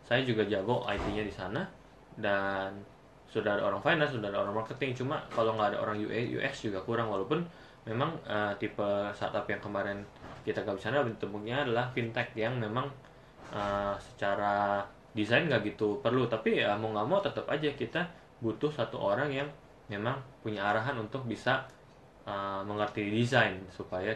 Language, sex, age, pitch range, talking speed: English, male, 20-39, 105-130 Hz, 160 wpm